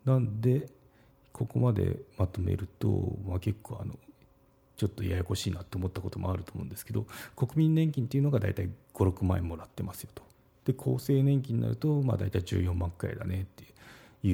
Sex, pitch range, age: male, 95-120 Hz, 40-59